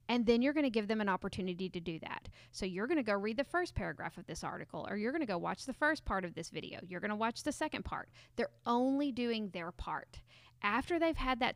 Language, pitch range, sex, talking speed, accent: English, 190-245 Hz, female, 250 wpm, American